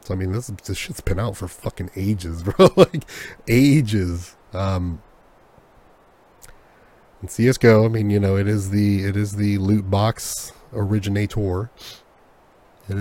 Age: 30-49